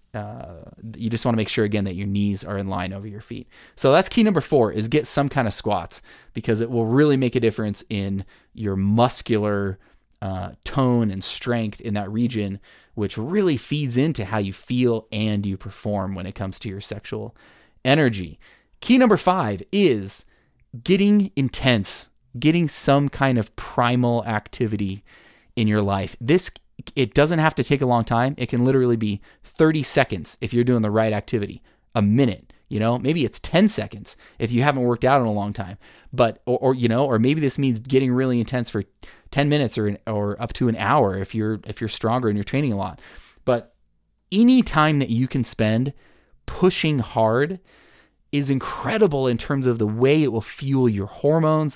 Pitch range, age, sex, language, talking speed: 105-140 Hz, 20-39, male, English, 195 wpm